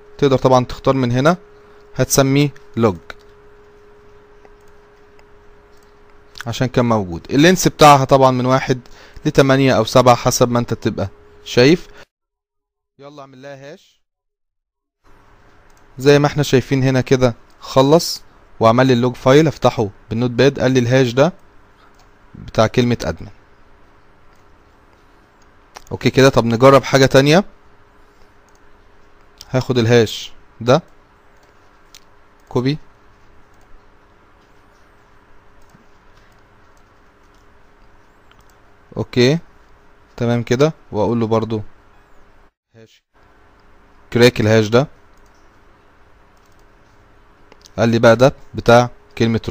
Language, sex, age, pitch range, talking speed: Arabic, male, 30-49, 100-130 Hz, 85 wpm